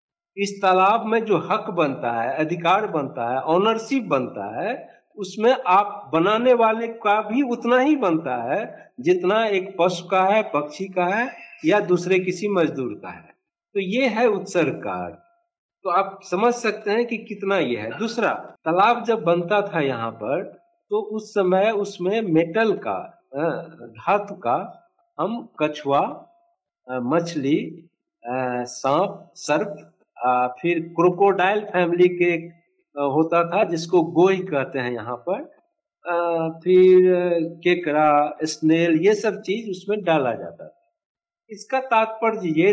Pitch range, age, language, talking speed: 160-225 Hz, 60-79, Hindi, 135 wpm